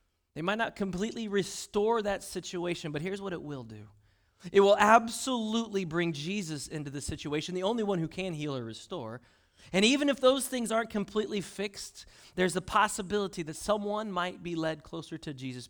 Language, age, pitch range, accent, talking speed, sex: English, 30-49, 110-165 Hz, American, 185 wpm, male